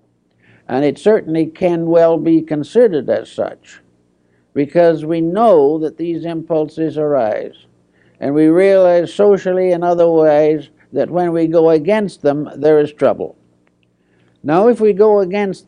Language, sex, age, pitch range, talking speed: English, male, 60-79, 130-170 Hz, 140 wpm